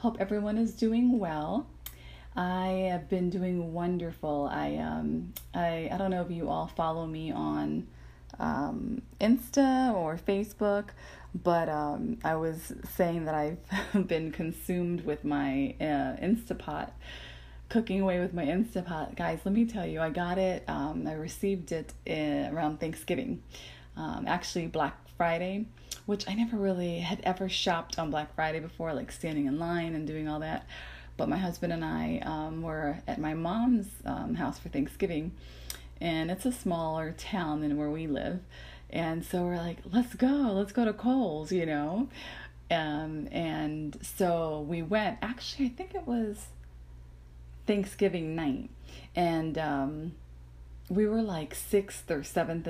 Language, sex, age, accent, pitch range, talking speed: English, female, 30-49, American, 150-195 Hz, 155 wpm